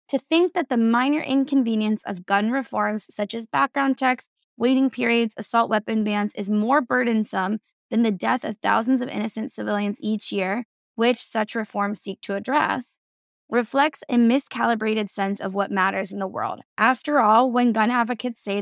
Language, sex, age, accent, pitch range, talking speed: English, female, 10-29, American, 205-250 Hz, 170 wpm